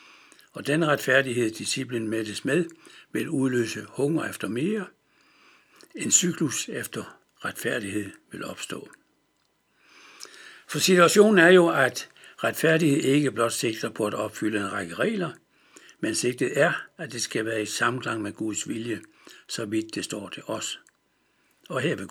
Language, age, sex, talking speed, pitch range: Danish, 60-79, male, 145 wpm, 115-165 Hz